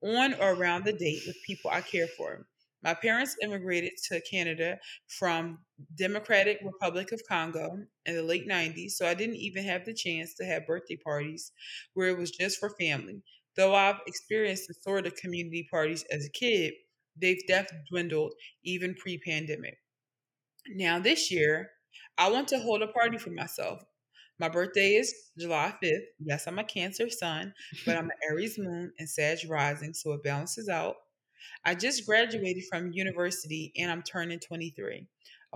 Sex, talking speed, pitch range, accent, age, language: female, 165 wpm, 160-205 Hz, American, 20-39, English